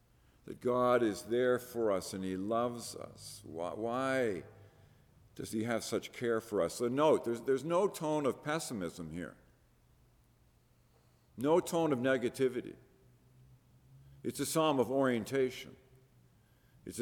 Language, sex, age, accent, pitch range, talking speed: English, male, 50-69, American, 110-140 Hz, 135 wpm